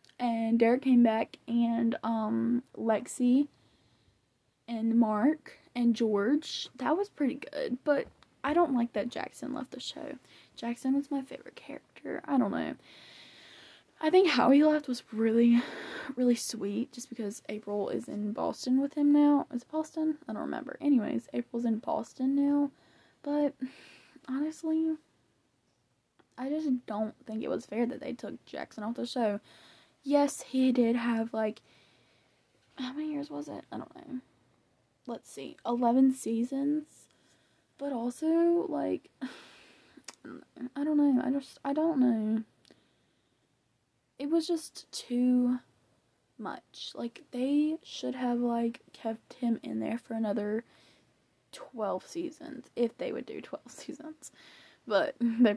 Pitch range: 230-290 Hz